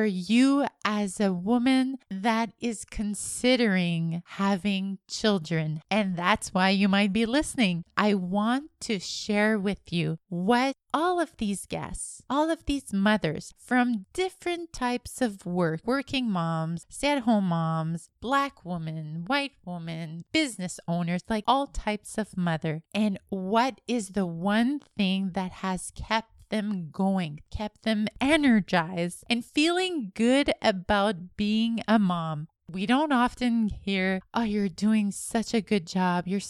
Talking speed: 140 wpm